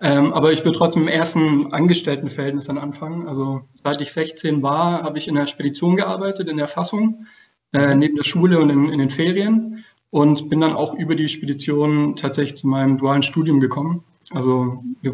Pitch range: 140-165 Hz